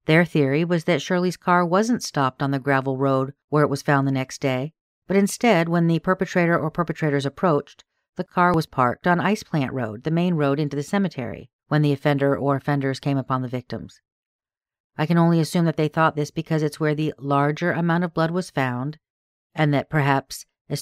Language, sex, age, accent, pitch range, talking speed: English, female, 40-59, American, 140-170 Hz, 210 wpm